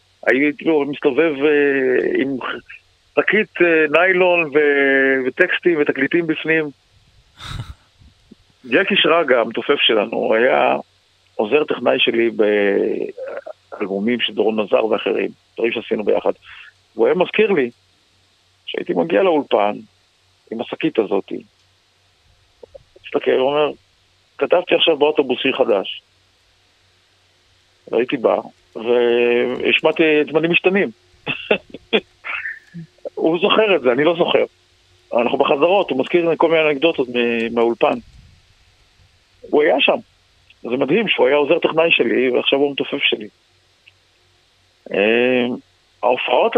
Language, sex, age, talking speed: Hebrew, male, 50-69, 95 wpm